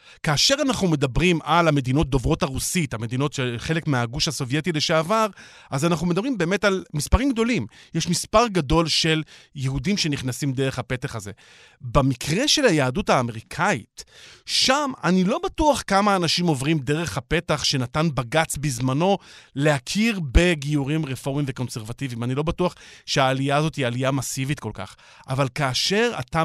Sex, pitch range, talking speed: male, 135-180 Hz, 140 wpm